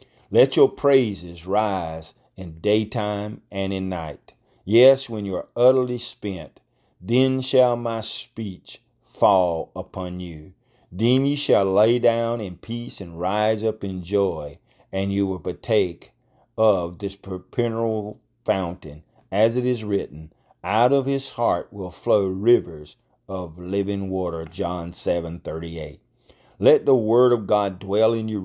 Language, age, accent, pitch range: English, 40-59, American, 90-115 Hz